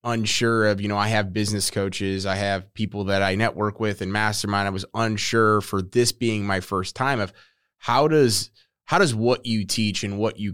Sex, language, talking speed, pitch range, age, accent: male, English, 210 wpm, 100-120 Hz, 20-39, American